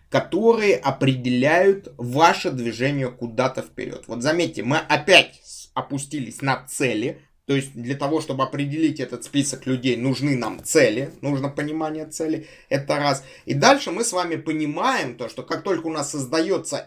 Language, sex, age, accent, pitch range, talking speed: Russian, male, 20-39, native, 135-175 Hz, 155 wpm